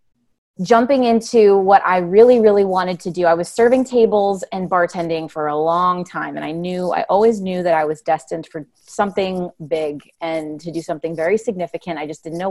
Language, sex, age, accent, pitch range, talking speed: English, female, 30-49, American, 165-210 Hz, 200 wpm